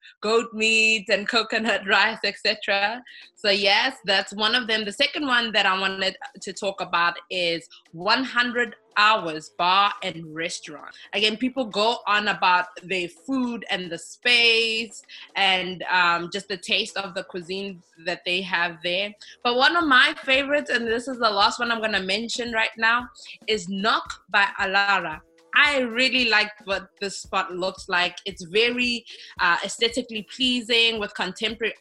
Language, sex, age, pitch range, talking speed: English, female, 20-39, 185-230 Hz, 160 wpm